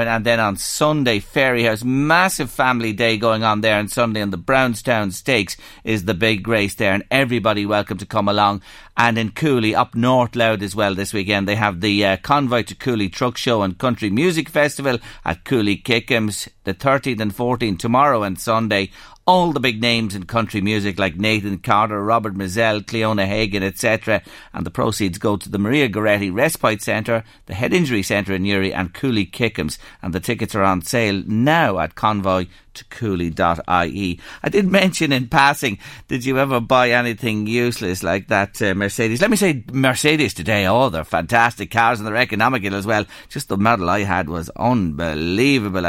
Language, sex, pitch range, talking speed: English, male, 100-130 Hz, 185 wpm